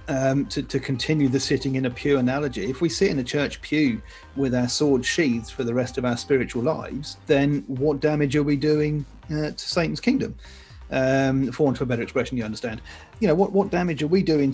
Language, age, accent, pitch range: English, 40-59, British, 125-155 Hz